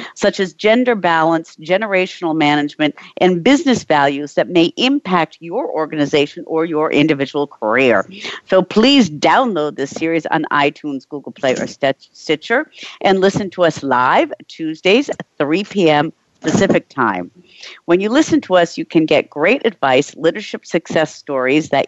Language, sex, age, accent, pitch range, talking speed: English, female, 50-69, American, 150-220 Hz, 150 wpm